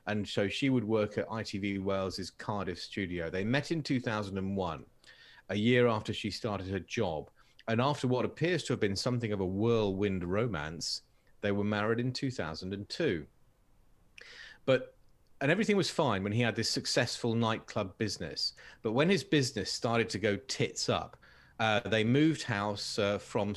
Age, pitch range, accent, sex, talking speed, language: 40-59, 100-125 Hz, British, male, 165 wpm, English